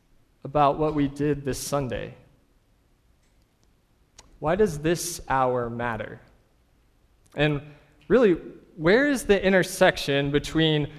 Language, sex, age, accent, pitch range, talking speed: English, male, 20-39, American, 120-145 Hz, 100 wpm